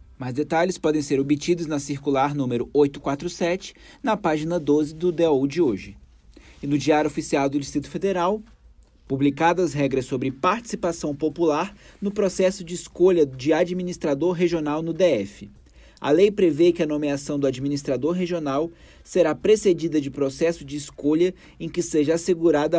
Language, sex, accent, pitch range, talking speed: Portuguese, male, Brazilian, 140-175 Hz, 145 wpm